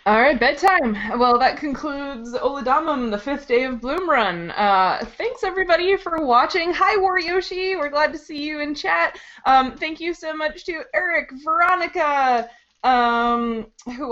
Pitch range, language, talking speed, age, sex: 220-285 Hz, English, 155 wpm, 20-39, female